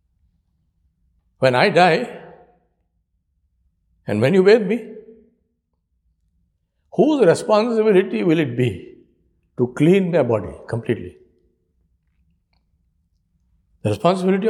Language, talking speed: English, 85 wpm